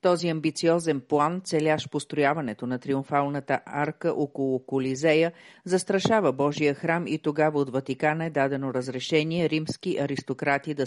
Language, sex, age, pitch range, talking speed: Bulgarian, female, 40-59, 135-170 Hz, 125 wpm